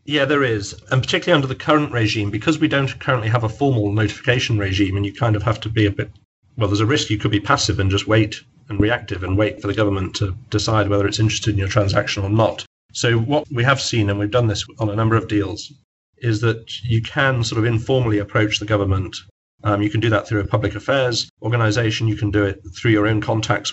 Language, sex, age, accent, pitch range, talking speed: English, male, 40-59, British, 105-125 Hz, 245 wpm